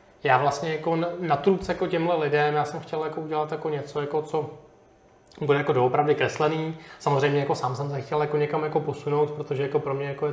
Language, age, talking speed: Czech, 20-39, 215 wpm